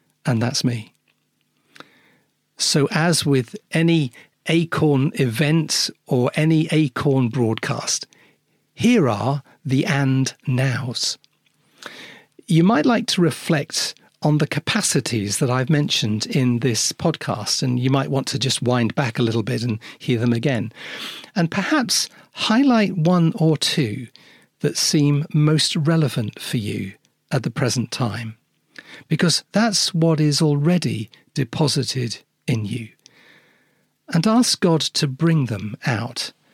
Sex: male